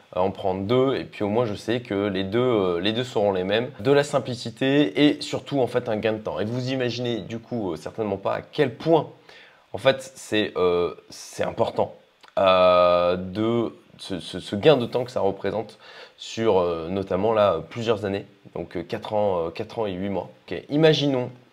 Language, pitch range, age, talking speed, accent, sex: French, 100-130 Hz, 20-39, 210 wpm, French, male